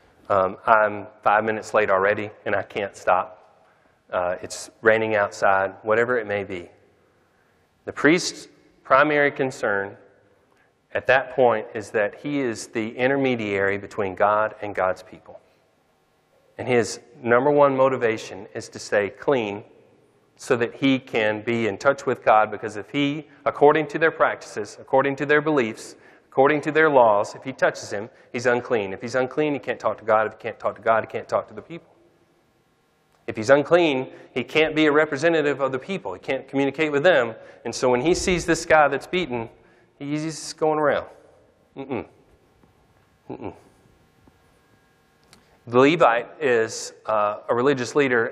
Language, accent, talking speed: English, American, 165 wpm